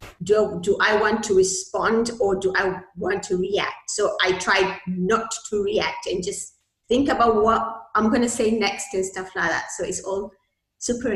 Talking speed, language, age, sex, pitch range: 190 wpm, English, 30-49, female, 205-275 Hz